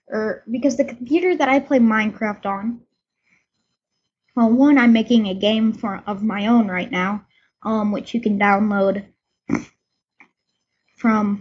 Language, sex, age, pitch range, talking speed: English, female, 10-29, 205-245 Hz, 140 wpm